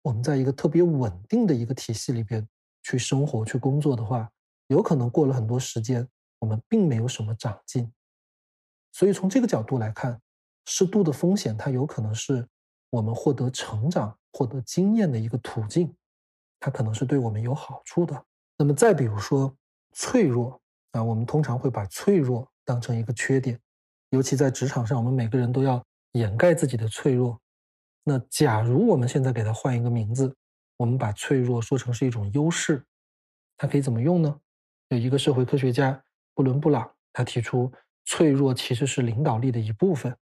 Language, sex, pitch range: Chinese, male, 115-145 Hz